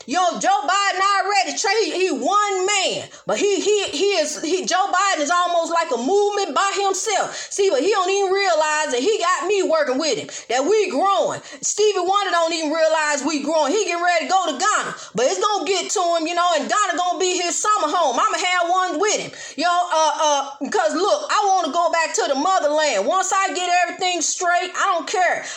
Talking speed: 230 wpm